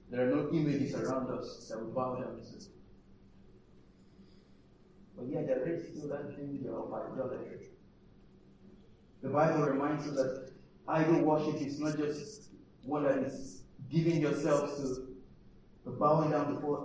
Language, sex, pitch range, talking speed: English, male, 135-165 Hz, 145 wpm